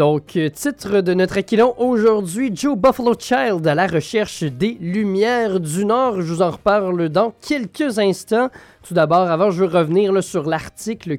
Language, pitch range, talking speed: French, 160-220 Hz, 165 wpm